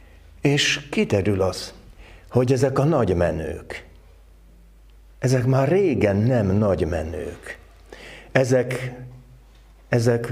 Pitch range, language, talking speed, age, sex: 105-125 Hz, Hungarian, 95 wpm, 60-79, male